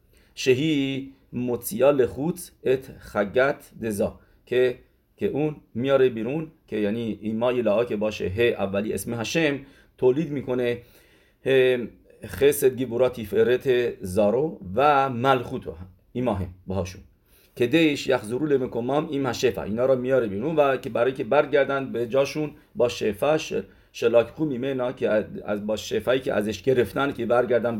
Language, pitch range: English, 105-135 Hz